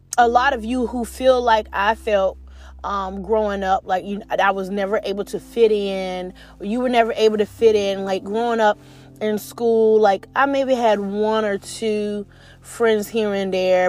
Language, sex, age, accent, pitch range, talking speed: English, female, 20-39, American, 190-235 Hz, 195 wpm